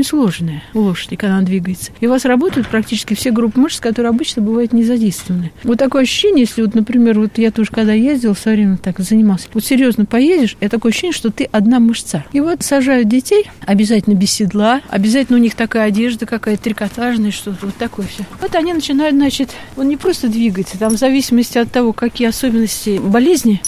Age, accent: 50-69, native